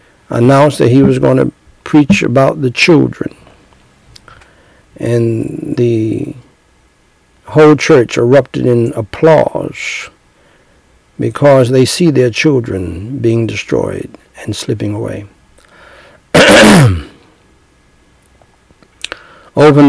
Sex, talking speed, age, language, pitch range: male, 85 wpm, 60-79, English, 105-150 Hz